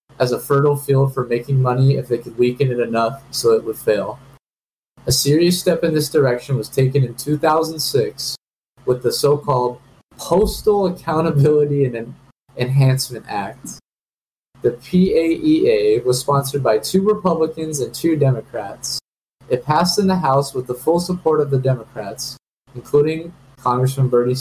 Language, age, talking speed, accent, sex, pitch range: English, 20-39, 145 wpm, American, male, 125-155 Hz